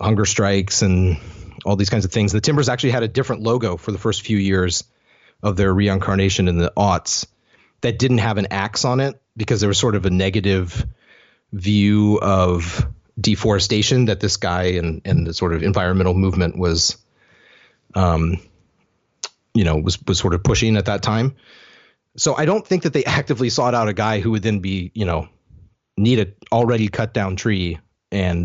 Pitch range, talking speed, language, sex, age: 95-125 Hz, 190 wpm, English, male, 30-49